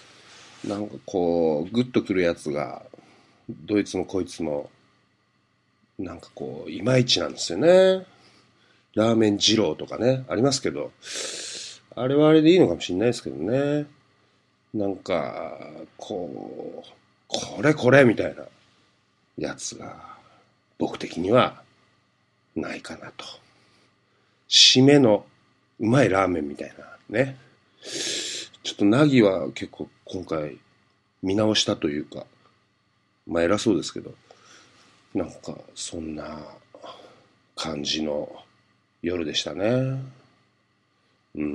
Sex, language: male, Japanese